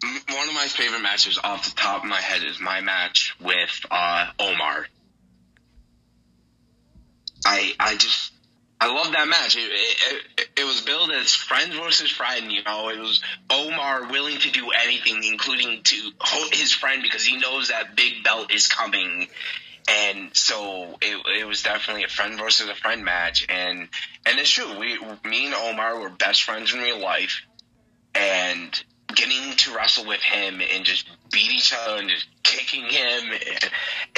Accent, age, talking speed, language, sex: American, 20-39, 170 wpm, English, male